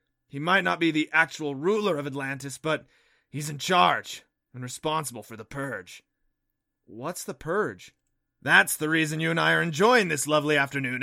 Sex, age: male, 30-49